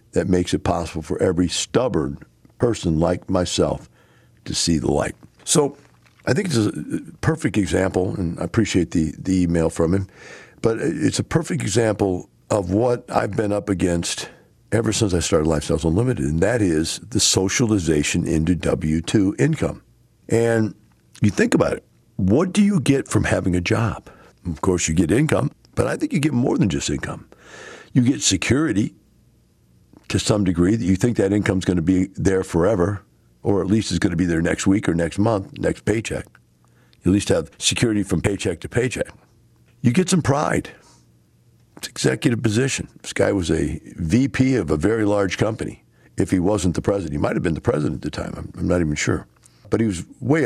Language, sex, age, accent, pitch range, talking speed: English, male, 60-79, American, 85-110 Hz, 195 wpm